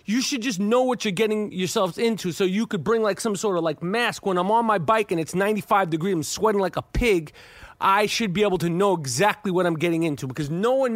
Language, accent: English, American